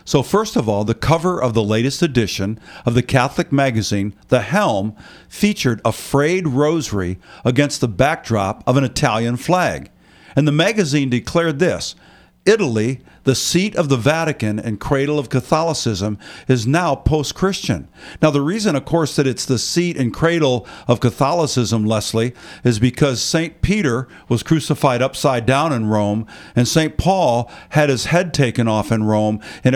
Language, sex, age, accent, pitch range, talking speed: English, male, 50-69, American, 115-155 Hz, 160 wpm